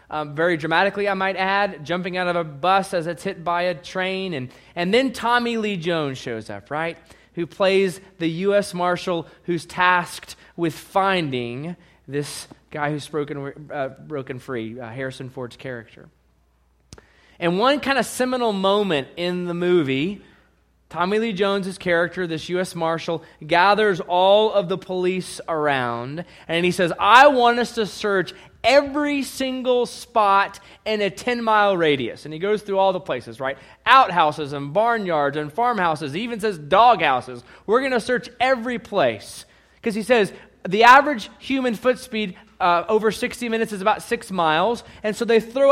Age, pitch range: 20-39, 150-220 Hz